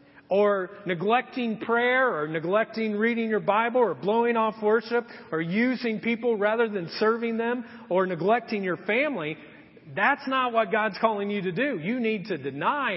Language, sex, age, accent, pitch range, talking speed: English, male, 40-59, American, 185-245 Hz, 160 wpm